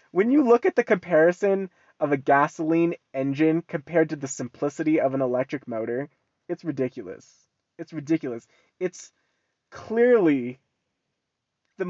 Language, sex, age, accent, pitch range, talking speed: English, male, 20-39, American, 135-175 Hz, 125 wpm